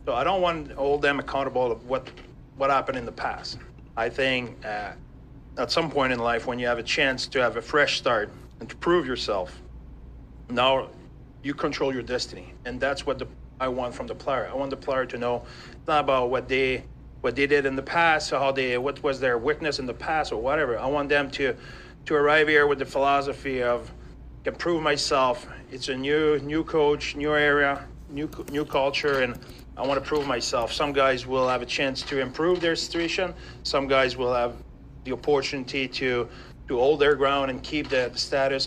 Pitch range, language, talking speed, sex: 125-145 Hz, English, 210 wpm, male